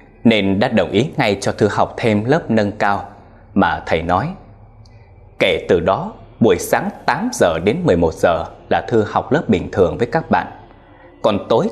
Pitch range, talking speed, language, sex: 100-150 Hz, 185 wpm, Vietnamese, male